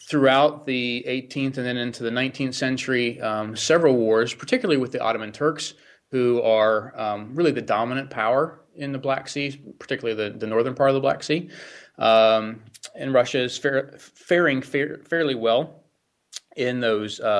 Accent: American